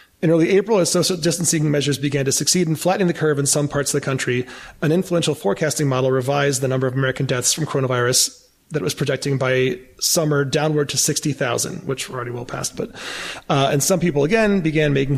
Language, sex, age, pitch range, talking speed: English, male, 30-49, 135-170 Hz, 210 wpm